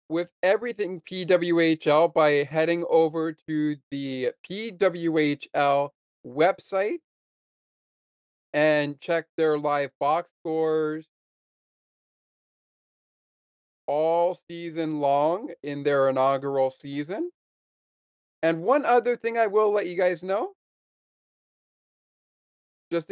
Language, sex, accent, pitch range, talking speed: English, male, American, 145-185 Hz, 90 wpm